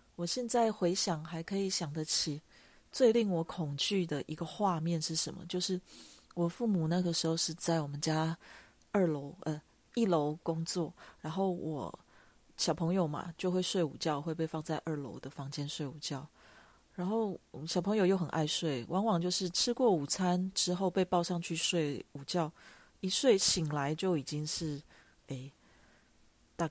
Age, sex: 30-49, female